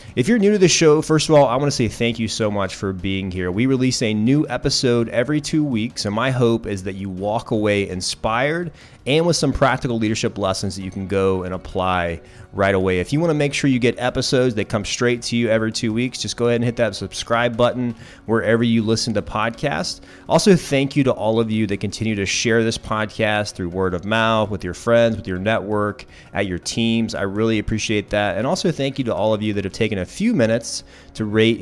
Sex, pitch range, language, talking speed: male, 95-120 Hz, English, 240 wpm